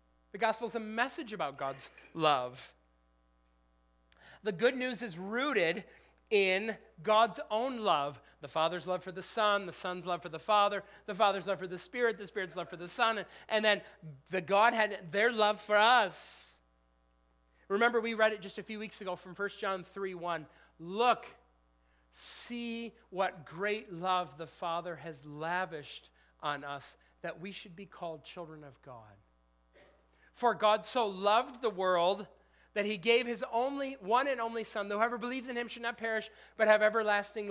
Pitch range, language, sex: 155-220 Hz, English, male